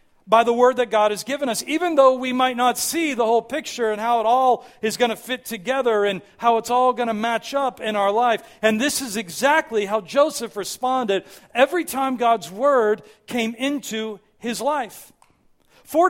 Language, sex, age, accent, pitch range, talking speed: English, male, 40-59, American, 195-245 Hz, 200 wpm